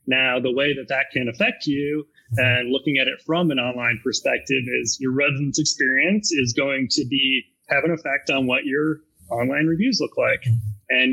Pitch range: 125-145 Hz